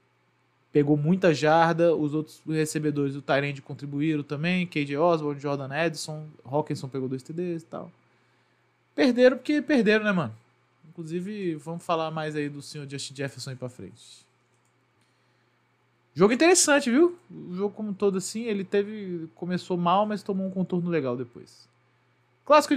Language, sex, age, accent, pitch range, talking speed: Portuguese, male, 20-39, Brazilian, 130-170 Hz, 150 wpm